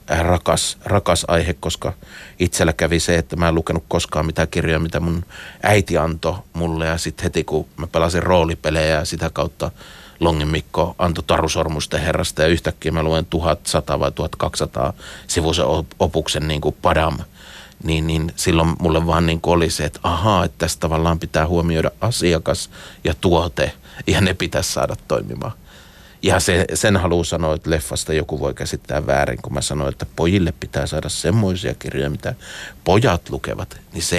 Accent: native